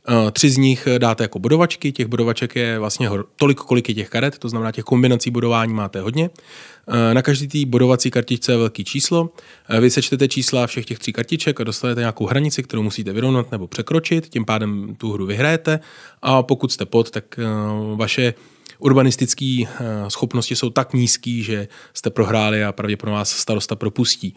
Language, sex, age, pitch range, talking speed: Czech, male, 20-39, 110-135 Hz, 170 wpm